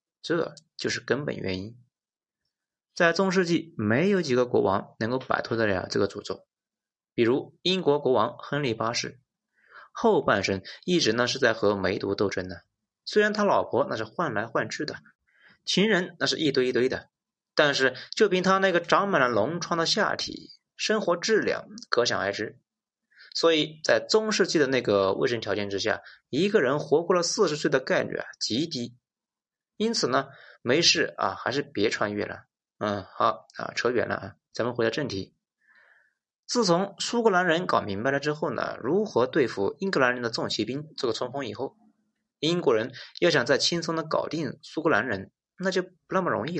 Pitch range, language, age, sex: 120-190 Hz, Chinese, 20-39, male